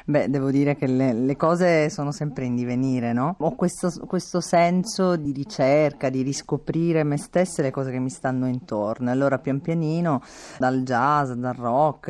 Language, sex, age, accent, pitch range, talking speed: Italian, female, 30-49, native, 120-145 Hz, 175 wpm